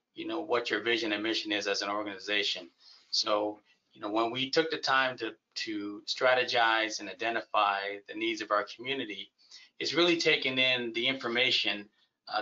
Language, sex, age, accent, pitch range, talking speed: English, male, 30-49, American, 105-130 Hz, 175 wpm